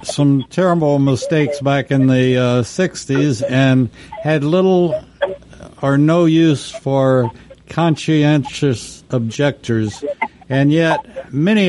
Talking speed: 105 wpm